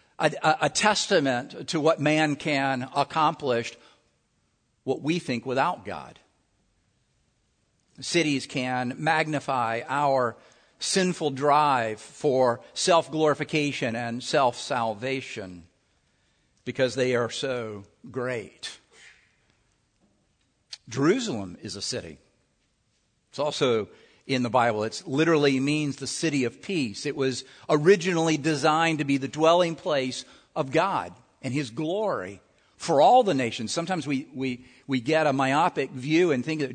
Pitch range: 125-155 Hz